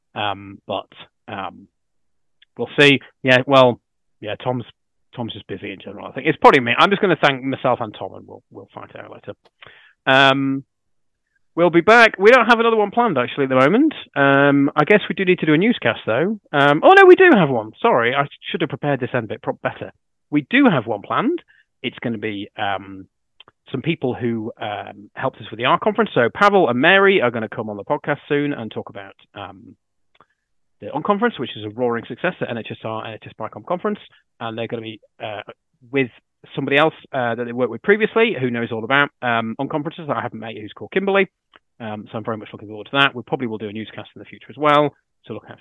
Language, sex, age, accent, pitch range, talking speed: English, male, 30-49, British, 115-165 Hz, 225 wpm